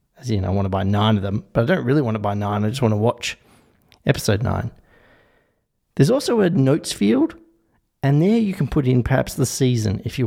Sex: male